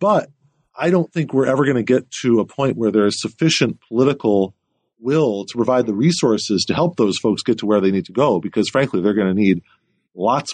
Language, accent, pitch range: English, American, 110-145 Hz